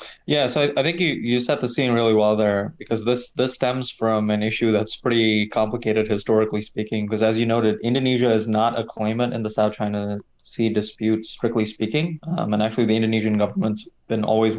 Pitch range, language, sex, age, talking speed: 105-120 Hz, English, male, 20-39, 205 wpm